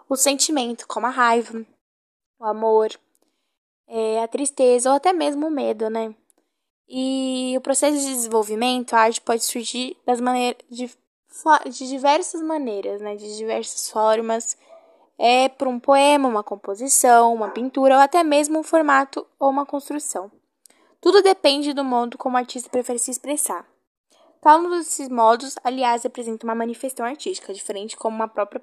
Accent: Brazilian